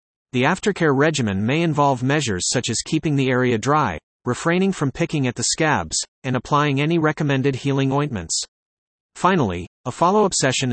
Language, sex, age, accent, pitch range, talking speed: English, male, 40-59, American, 120-155 Hz, 155 wpm